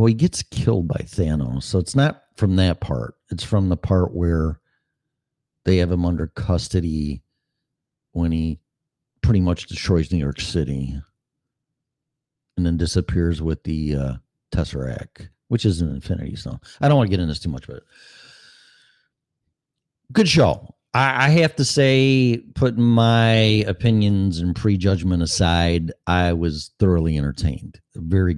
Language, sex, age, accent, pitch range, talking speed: English, male, 50-69, American, 85-145 Hz, 150 wpm